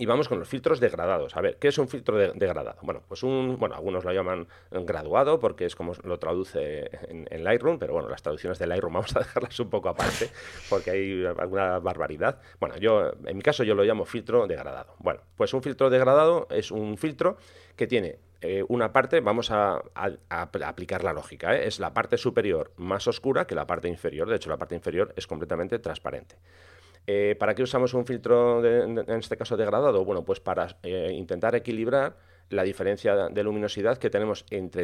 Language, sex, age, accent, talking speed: English, male, 30-49, Spanish, 205 wpm